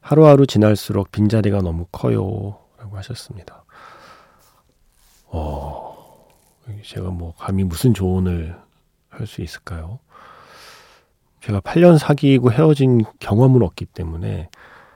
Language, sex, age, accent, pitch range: Korean, male, 40-59, native, 95-125 Hz